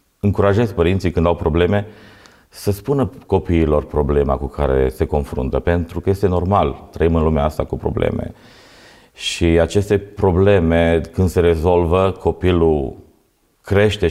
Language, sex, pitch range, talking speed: Romanian, male, 75-100 Hz, 130 wpm